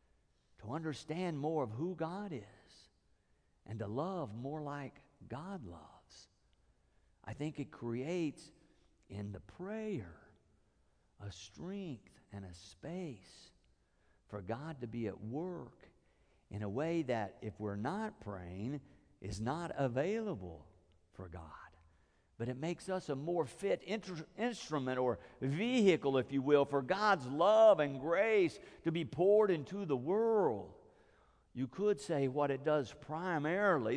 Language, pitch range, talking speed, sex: English, 105-165 Hz, 130 wpm, male